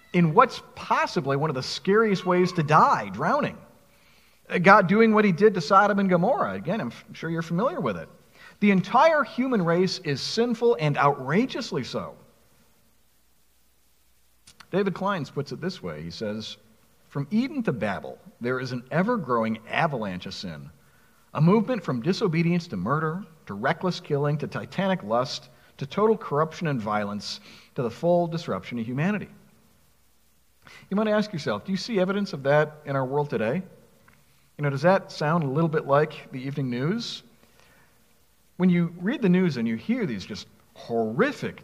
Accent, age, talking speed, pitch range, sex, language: American, 50-69, 165 wpm, 130-195 Hz, male, English